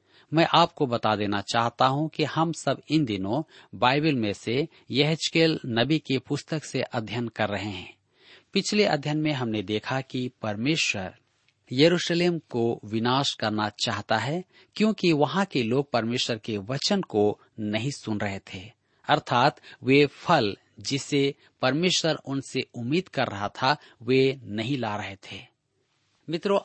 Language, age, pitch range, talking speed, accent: Hindi, 40-59, 115-155 Hz, 145 wpm, native